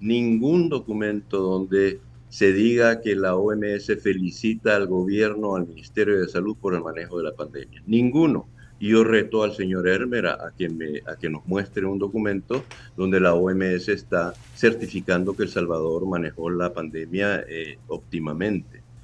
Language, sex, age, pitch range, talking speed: Spanish, male, 50-69, 95-130 Hz, 150 wpm